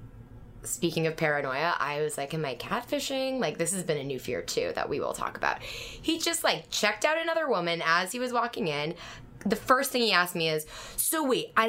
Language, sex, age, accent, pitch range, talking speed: English, female, 10-29, American, 150-225 Hz, 225 wpm